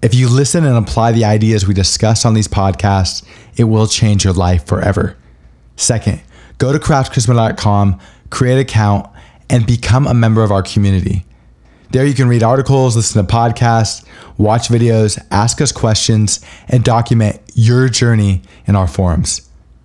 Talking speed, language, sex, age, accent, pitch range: 155 wpm, English, male, 20-39, American, 95-115 Hz